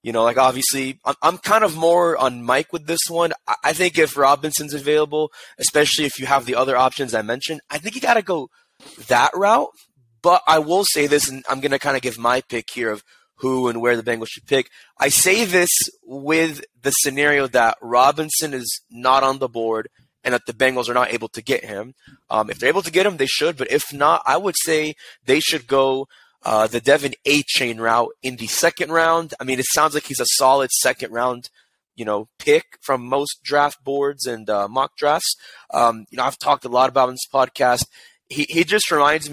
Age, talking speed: 20-39, 220 wpm